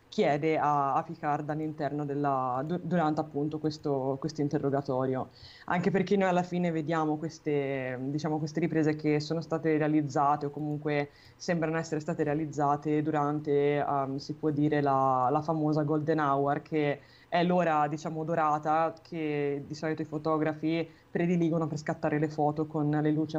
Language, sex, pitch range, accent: Italian, female, 150-205 Hz, native